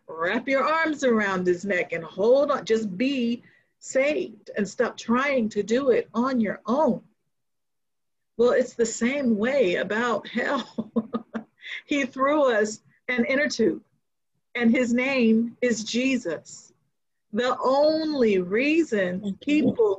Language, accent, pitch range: English, American, 220-270 Hz